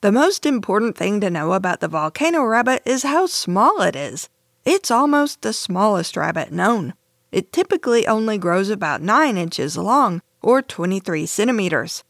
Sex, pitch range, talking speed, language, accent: female, 185-270 Hz, 160 wpm, English, American